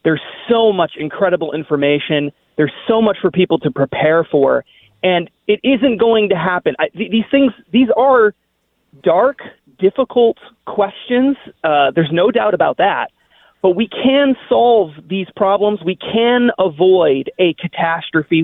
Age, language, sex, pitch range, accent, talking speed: 30-49, English, male, 165-230 Hz, American, 140 wpm